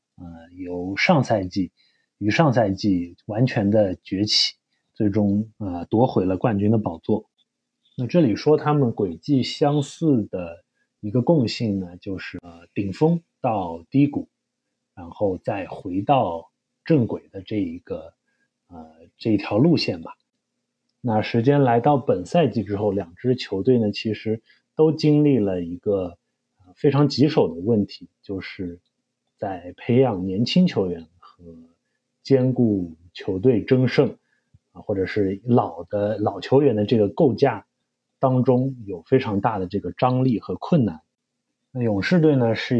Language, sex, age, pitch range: Chinese, male, 30-49, 95-135 Hz